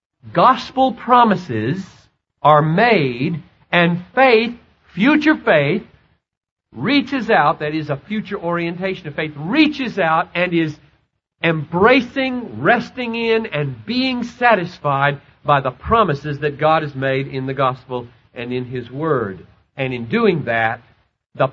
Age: 50-69